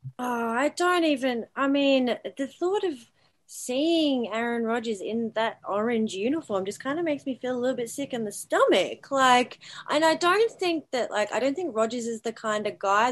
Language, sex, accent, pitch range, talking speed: English, female, Australian, 180-240 Hz, 205 wpm